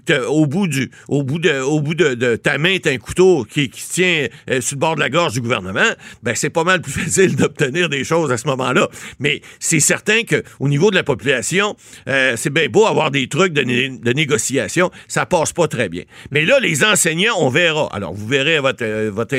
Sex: male